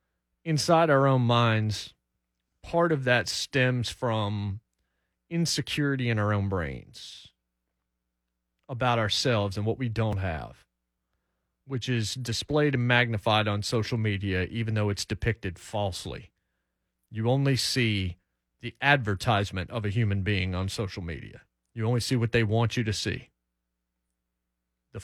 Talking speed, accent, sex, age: 135 wpm, American, male, 40-59